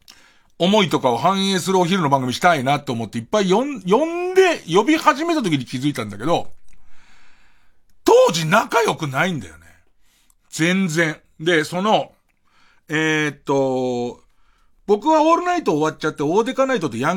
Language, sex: Japanese, male